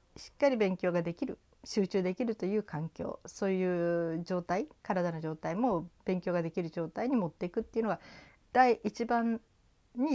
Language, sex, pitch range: Japanese, female, 155-200 Hz